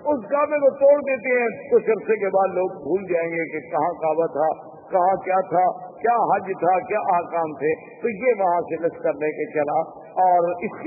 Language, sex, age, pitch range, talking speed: Urdu, male, 50-69, 170-265 Hz, 205 wpm